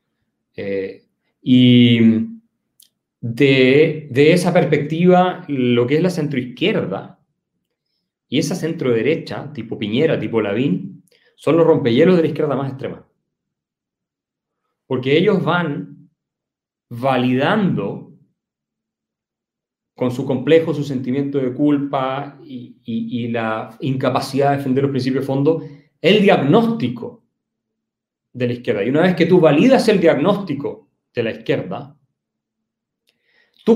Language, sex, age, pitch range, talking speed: Spanish, male, 30-49, 125-170 Hz, 115 wpm